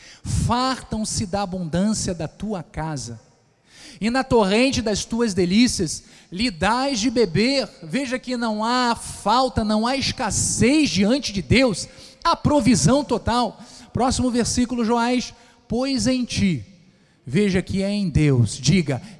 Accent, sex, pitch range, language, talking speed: Brazilian, male, 200-280 Hz, Portuguese, 130 wpm